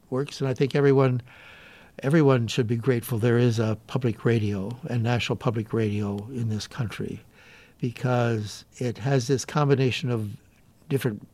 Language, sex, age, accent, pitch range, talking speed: English, male, 60-79, American, 110-135 Hz, 150 wpm